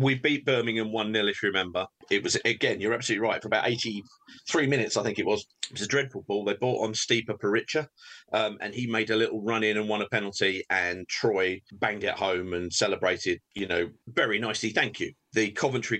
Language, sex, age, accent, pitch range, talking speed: English, male, 40-59, British, 100-155 Hz, 220 wpm